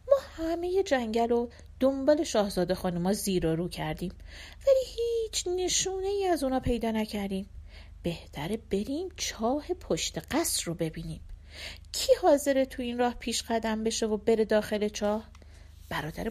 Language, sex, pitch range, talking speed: Persian, female, 170-275 Hz, 145 wpm